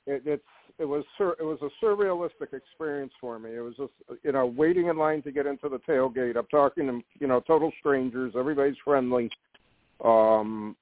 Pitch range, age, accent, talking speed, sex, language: 125-155 Hz, 60-79, American, 195 wpm, male, English